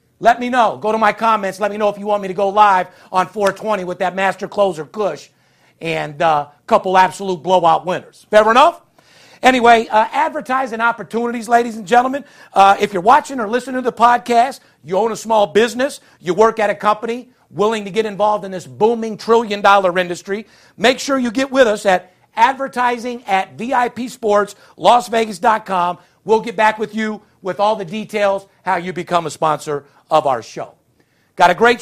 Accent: American